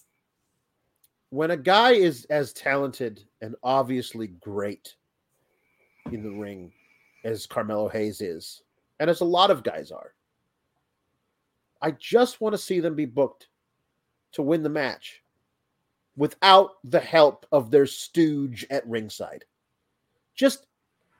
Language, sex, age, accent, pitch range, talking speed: English, male, 40-59, American, 165-275 Hz, 125 wpm